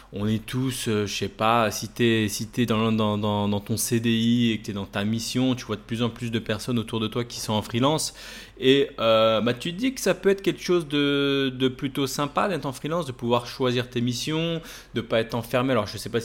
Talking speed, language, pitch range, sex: 270 wpm, French, 110-140 Hz, male